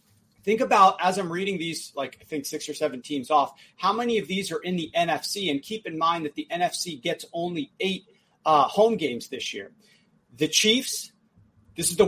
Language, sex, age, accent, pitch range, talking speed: English, male, 40-59, American, 155-210 Hz, 210 wpm